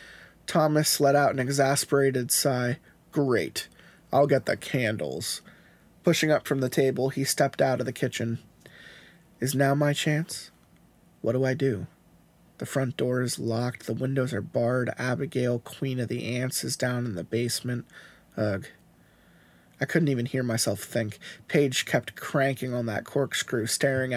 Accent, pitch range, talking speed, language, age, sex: American, 120-145 Hz, 155 wpm, English, 20-39, male